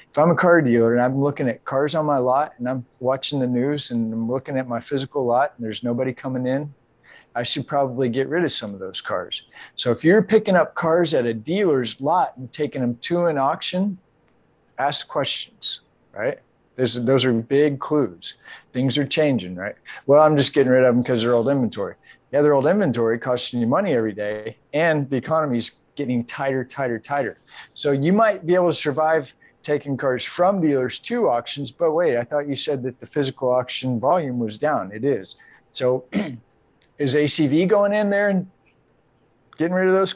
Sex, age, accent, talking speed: male, 50-69, American, 200 wpm